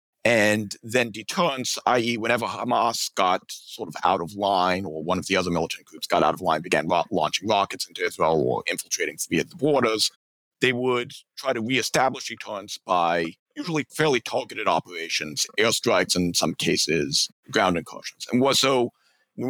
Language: English